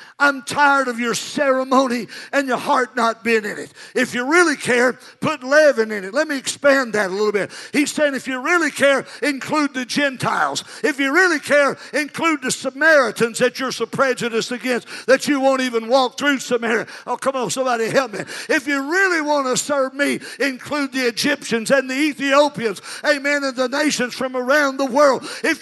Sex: male